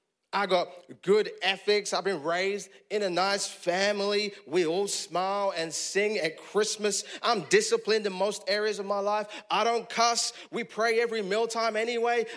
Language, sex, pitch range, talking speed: English, male, 205-275 Hz, 165 wpm